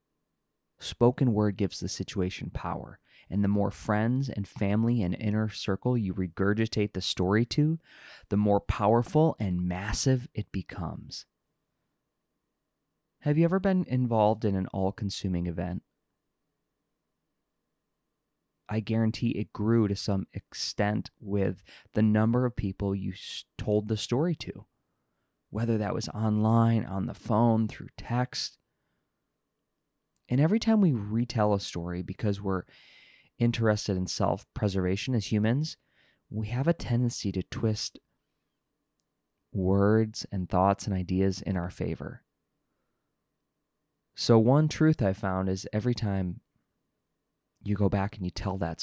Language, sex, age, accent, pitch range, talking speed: English, male, 20-39, American, 95-120 Hz, 130 wpm